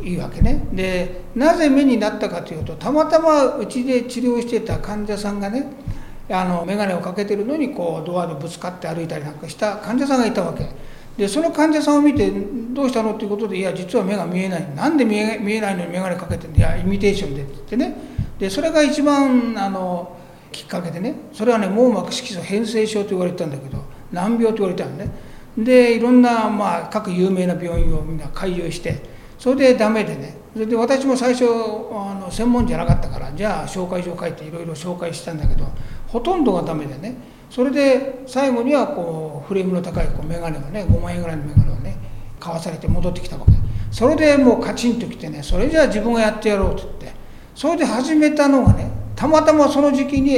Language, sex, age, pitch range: Japanese, male, 60-79, 170-250 Hz